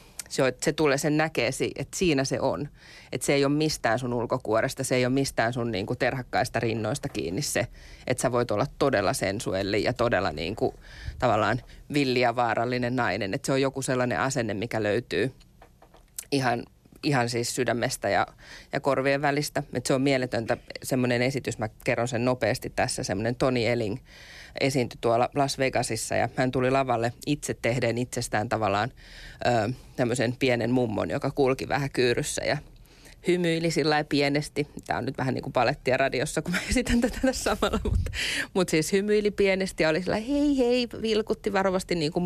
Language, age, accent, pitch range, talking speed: Finnish, 20-39, native, 120-150 Hz, 175 wpm